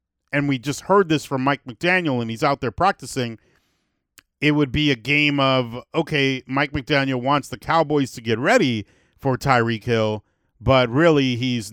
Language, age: English, 40-59